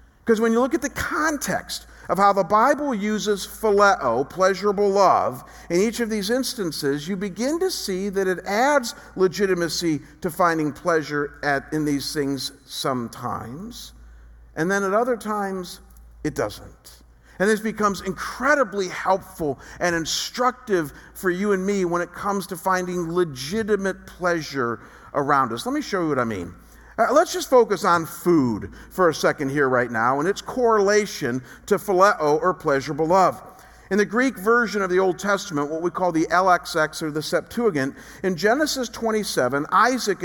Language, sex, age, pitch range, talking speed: English, male, 50-69, 160-215 Hz, 160 wpm